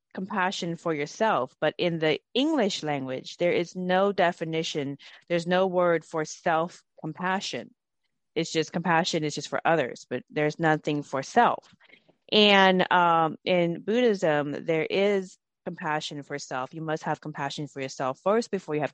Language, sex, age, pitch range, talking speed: English, female, 30-49, 155-190 Hz, 150 wpm